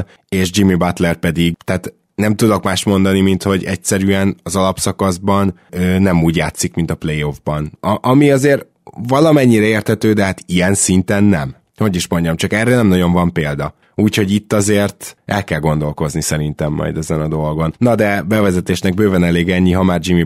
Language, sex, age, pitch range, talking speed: Hungarian, male, 20-39, 85-100 Hz, 170 wpm